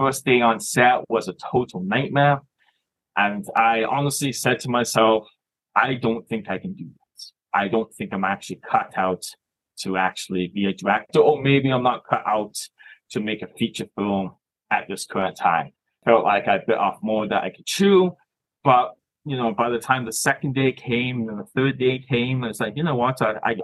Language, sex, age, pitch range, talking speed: English, male, 20-39, 115-145 Hz, 205 wpm